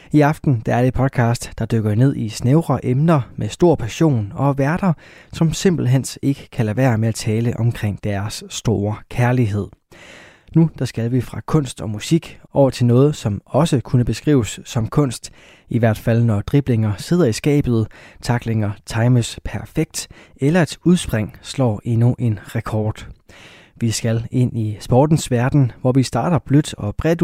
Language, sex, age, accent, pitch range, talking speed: Danish, male, 20-39, native, 110-140 Hz, 170 wpm